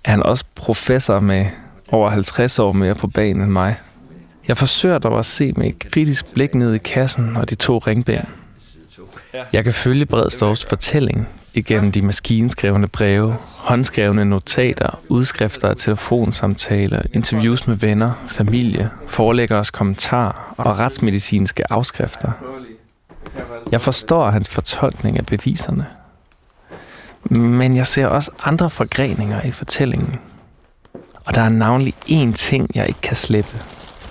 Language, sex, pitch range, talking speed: Danish, male, 105-130 Hz, 135 wpm